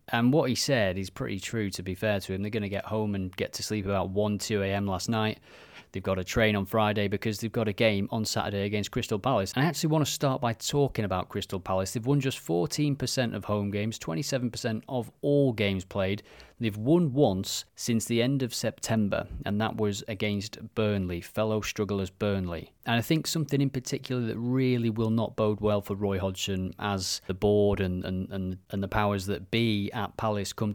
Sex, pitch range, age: male, 100-115 Hz, 30-49